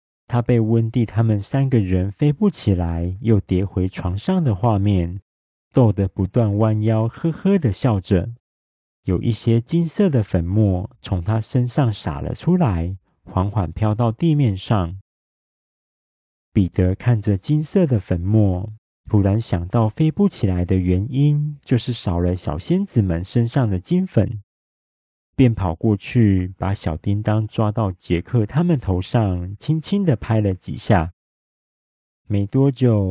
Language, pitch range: Chinese, 95-125 Hz